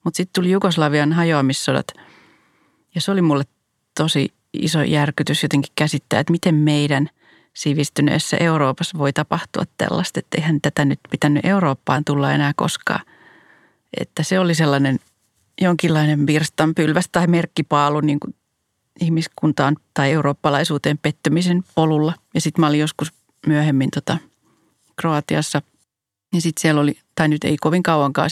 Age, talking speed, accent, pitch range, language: 30-49, 135 wpm, native, 145-170 Hz, Finnish